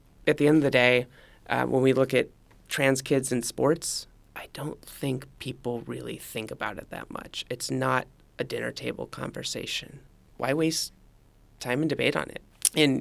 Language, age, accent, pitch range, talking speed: English, 30-49, American, 125-155 Hz, 180 wpm